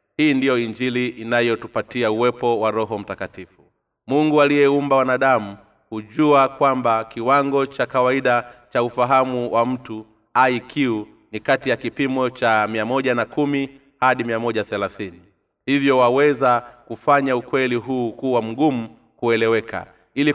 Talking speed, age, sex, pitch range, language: 110 wpm, 30-49, male, 115-135 Hz, Swahili